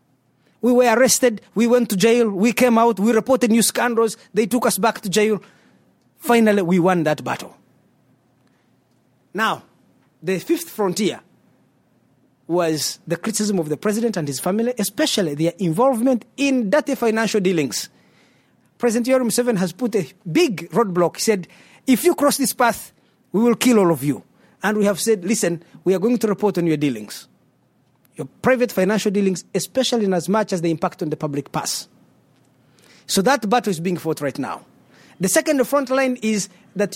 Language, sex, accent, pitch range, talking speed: English, male, South African, 190-250 Hz, 175 wpm